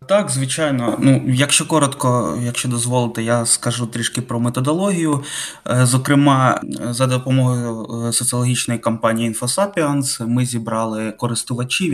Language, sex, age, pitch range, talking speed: Ukrainian, male, 20-39, 115-135 Hz, 105 wpm